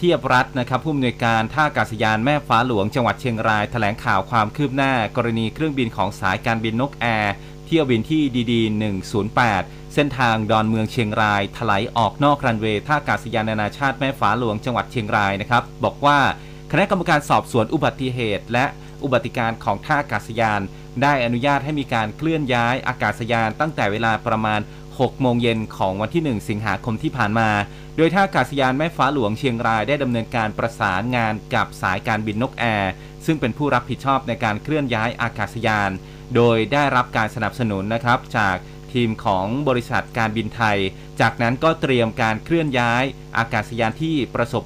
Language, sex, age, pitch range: Thai, male, 30-49, 110-140 Hz